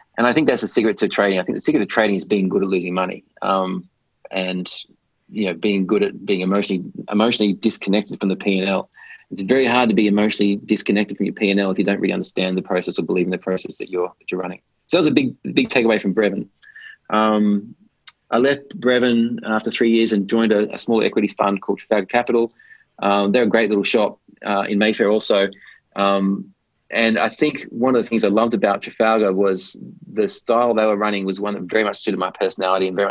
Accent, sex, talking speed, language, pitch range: Australian, male, 225 wpm, English, 95-110 Hz